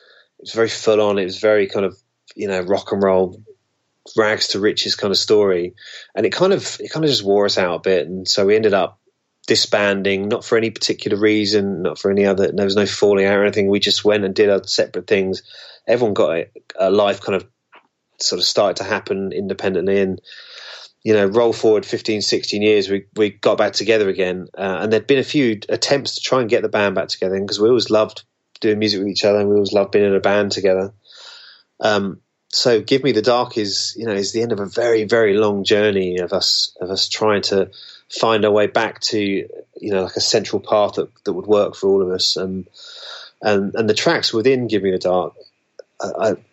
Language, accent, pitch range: English, British, 95-115 Hz